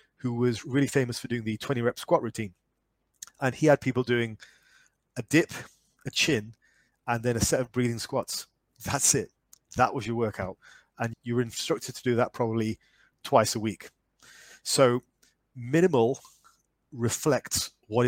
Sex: male